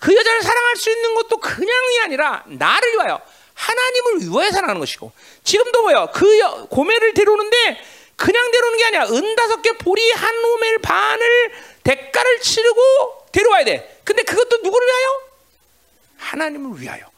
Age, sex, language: 40-59, male, Korean